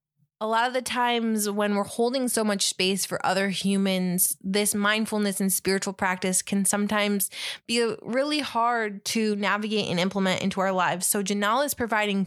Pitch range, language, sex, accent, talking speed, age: 190-225 Hz, English, female, American, 170 wpm, 20-39